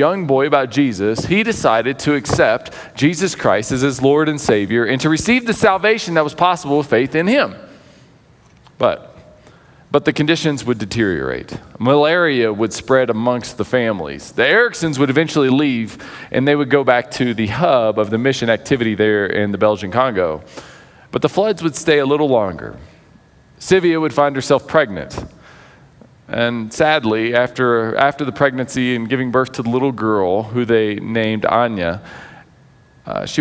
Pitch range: 120-155 Hz